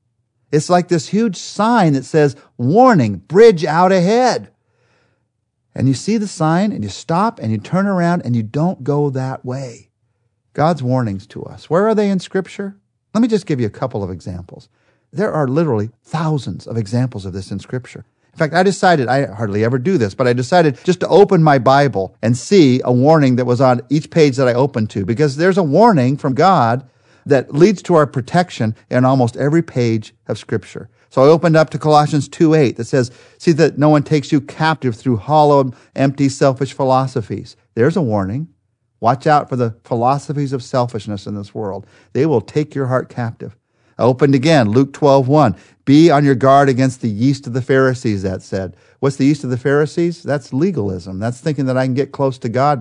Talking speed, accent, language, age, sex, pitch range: 200 wpm, American, English, 50-69, male, 120-155 Hz